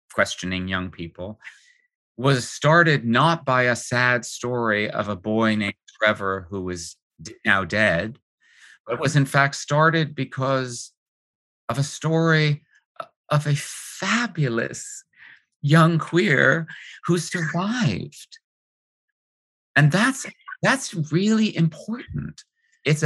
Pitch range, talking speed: 105-150 Hz, 105 wpm